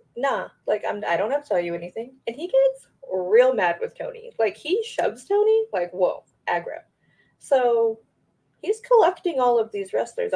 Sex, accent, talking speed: female, American, 180 wpm